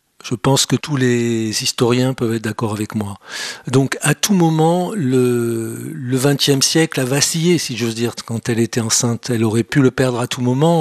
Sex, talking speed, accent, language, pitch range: male, 200 wpm, French, French, 120-150 Hz